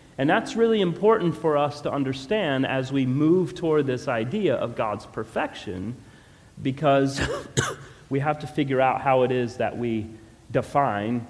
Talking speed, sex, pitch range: 155 wpm, male, 115-145 Hz